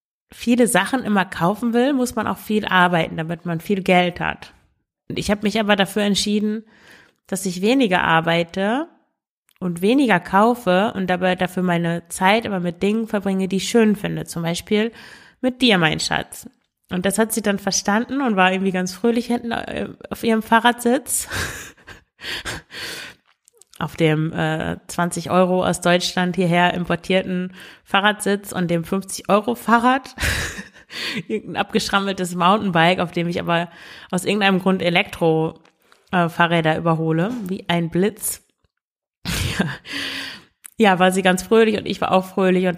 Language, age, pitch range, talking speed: German, 30-49, 170-210 Hz, 145 wpm